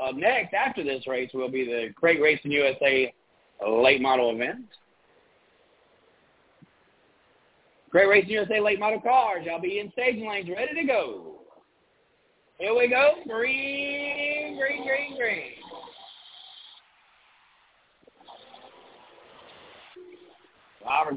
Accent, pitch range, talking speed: American, 160-260 Hz, 100 wpm